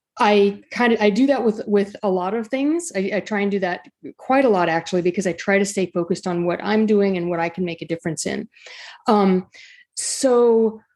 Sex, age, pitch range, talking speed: female, 30-49, 190-235 Hz, 230 wpm